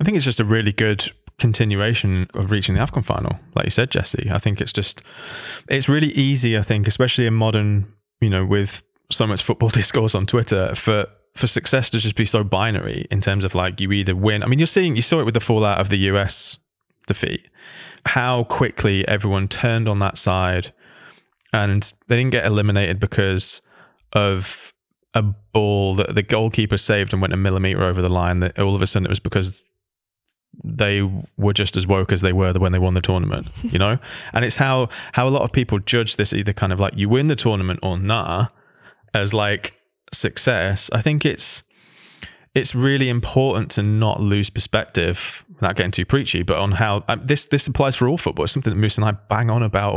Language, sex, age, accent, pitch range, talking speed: English, male, 20-39, British, 100-120 Hz, 210 wpm